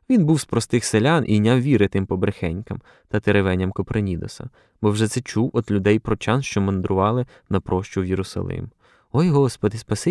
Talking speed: 160 wpm